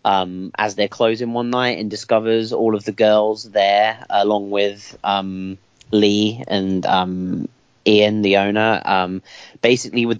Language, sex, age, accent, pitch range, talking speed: English, male, 30-49, British, 100-120 Hz, 145 wpm